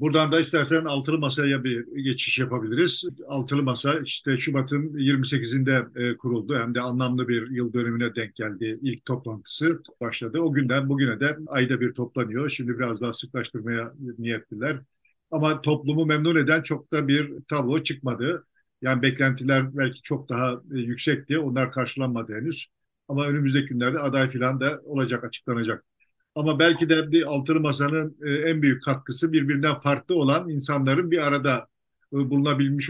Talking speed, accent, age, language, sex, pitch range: 140 wpm, native, 50-69, Turkish, male, 130-155 Hz